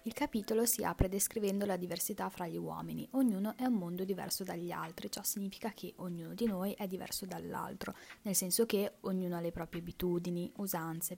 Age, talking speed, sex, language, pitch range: 20-39, 190 wpm, female, Italian, 175-225 Hz